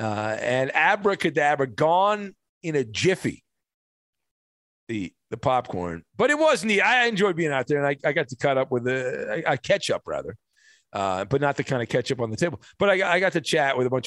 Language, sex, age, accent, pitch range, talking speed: English, male, 40-59, American, 125-180 Hz, 215 wpm